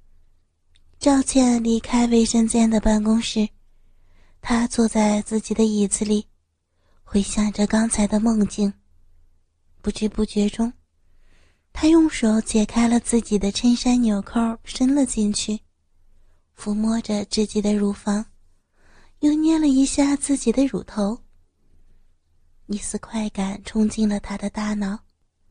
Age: 30-49